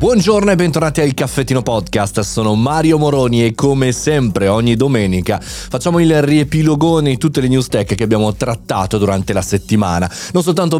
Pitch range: 105-150 Hz